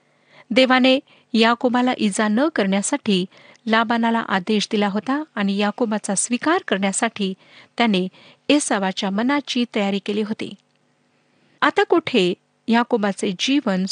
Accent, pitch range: native, 205-255 Hz